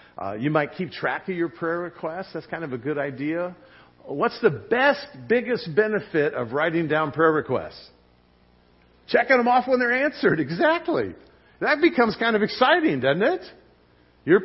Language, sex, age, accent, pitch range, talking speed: English, male, 50-69, American, 115-180 Hz, 165 wpm